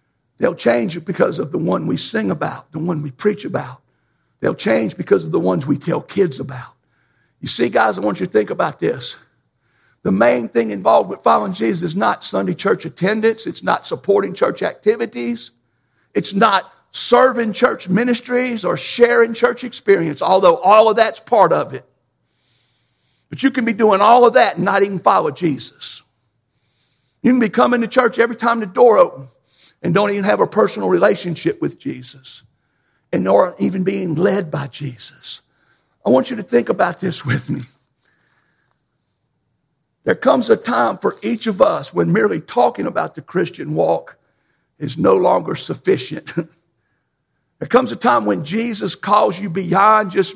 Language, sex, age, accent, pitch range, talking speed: English, male, 60-79, American, 130-220 Hz, 175 wpm